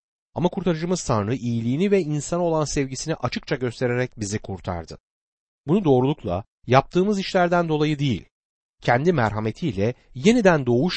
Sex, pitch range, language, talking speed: male, 105-170 Hz, Turkish, 120 wpm